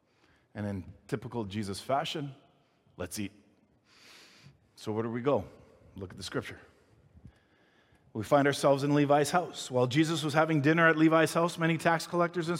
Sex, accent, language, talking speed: male, American, English, 160 wpm